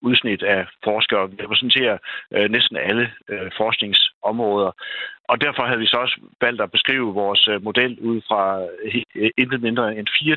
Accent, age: native, 60-79